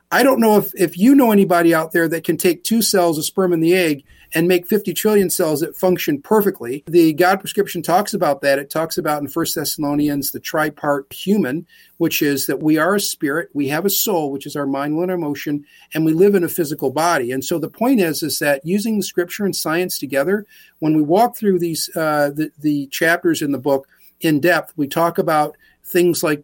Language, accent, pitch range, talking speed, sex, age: English, American, 150-185 Hz, 225 wpm, male, 50-69